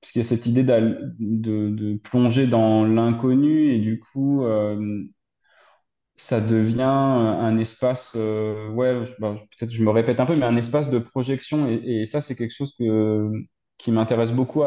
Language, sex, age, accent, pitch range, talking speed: French, male, 20-39, French, 110-125 Hz, 180 wpm